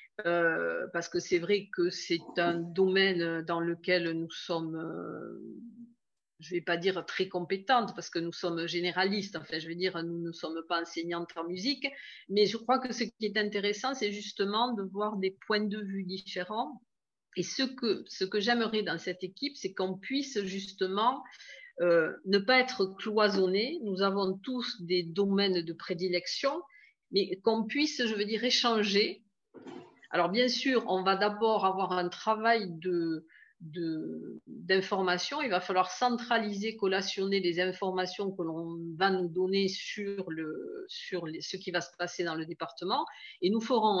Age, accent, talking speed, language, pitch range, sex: 50-69, French, 170 wpm, French, 175-230 Hz, female